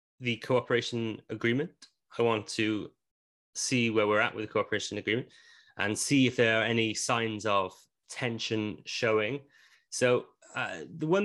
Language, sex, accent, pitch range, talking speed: English, male, British, 100-125 Hz, 150 wpm